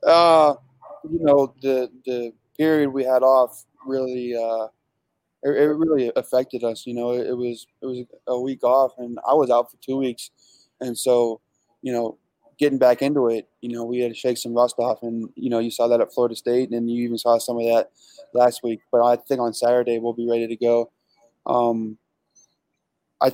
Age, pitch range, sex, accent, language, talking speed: 20-39, 115-130 Hz, male, American, English, 205 wpm